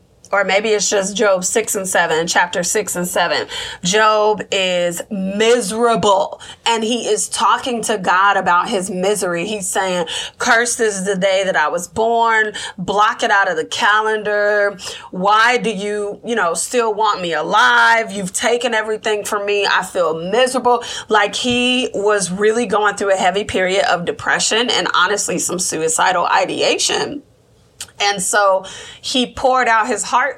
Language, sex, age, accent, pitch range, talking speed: English, female, 20-39, American, 195-240 Hz, 160 wpm